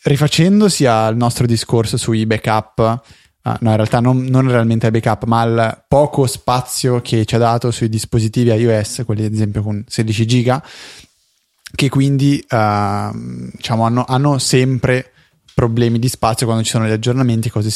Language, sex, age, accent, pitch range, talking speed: Italian, male, 20-39, native, 115-135 Hz, 165 wpm